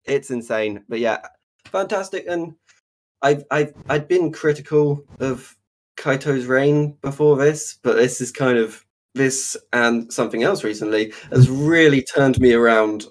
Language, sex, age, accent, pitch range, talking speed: English, male, 20-39, British, 110-135 Hz, 140 wpm